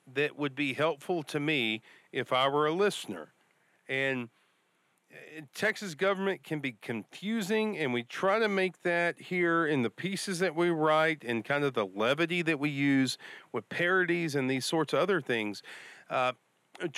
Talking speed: 165 wpm